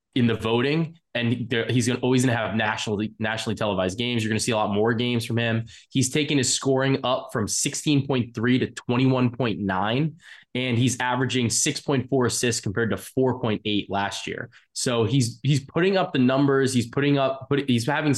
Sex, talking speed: male, 190 wpm